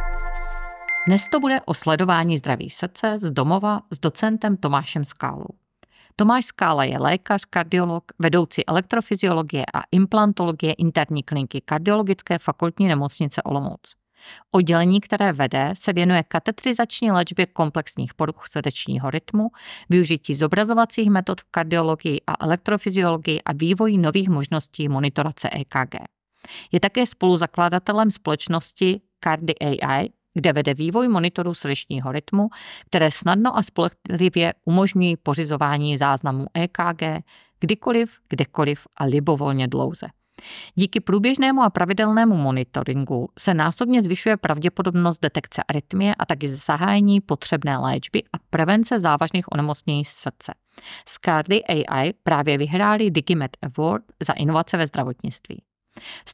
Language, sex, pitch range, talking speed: Czech, female, 150-195 Hz, 115 wpm